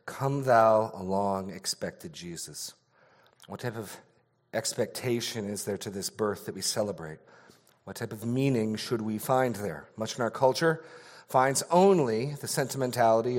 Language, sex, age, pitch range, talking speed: English, male, 40-59, 105-125 Hz, 150 wpm